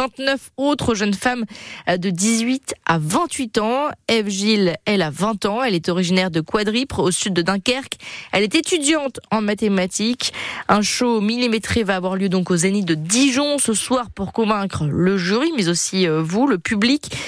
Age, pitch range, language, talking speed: 20-39, 195-245 Hz, French, 175 wpm